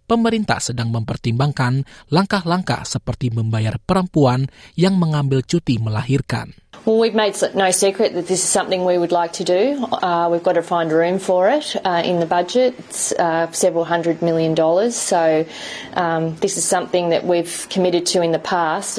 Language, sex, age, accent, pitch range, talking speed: English, female, 30-49, Australian, 130-185 Hz, 175 wpm